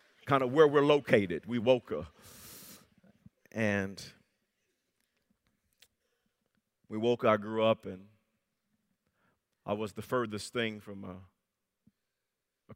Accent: American